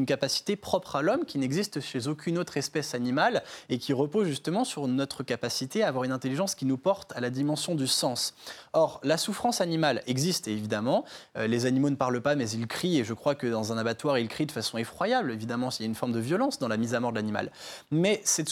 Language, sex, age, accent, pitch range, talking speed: French, male, 20-39, French, 125-175 Hz, 240 wpm